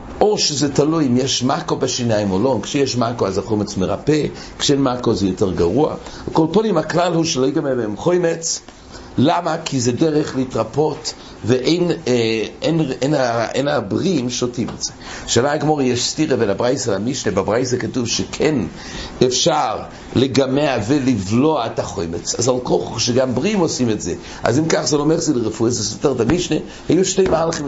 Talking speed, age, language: 160 wpm, 60-79, English